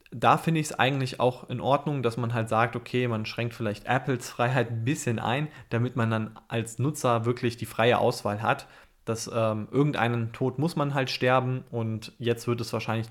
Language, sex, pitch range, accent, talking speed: German, male, 110-125 Hz, German, 200 wpm